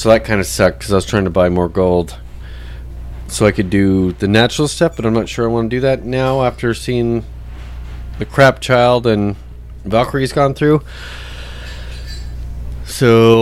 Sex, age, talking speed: male, 30-49, 180 wpm